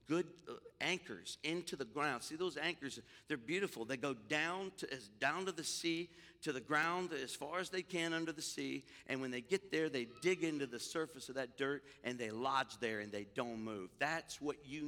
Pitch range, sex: 165-240 Hz, male